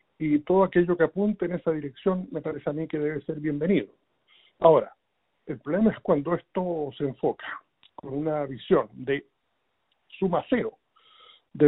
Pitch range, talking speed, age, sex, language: 150-190 Hz, 155 wpm, 60-79, male, Spanish